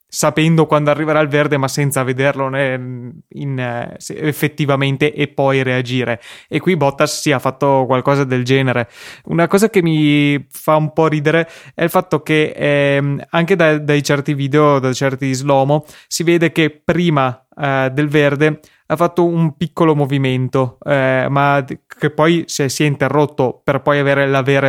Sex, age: male, 20-39